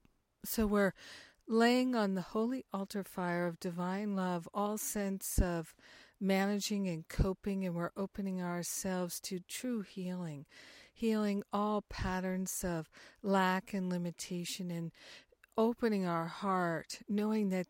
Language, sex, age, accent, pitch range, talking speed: English, female, 60-79, American, 180-205 Hz, 125 wpm